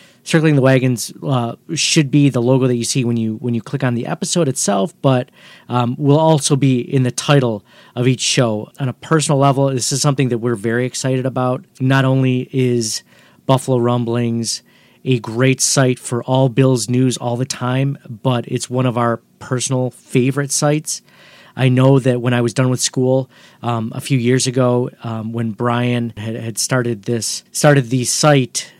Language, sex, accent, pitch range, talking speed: English, male, American, 125-150 Hz, 185 wpm